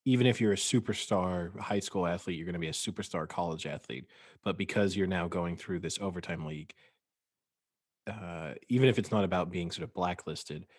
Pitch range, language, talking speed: 85-100 Hz, English, 195 wpm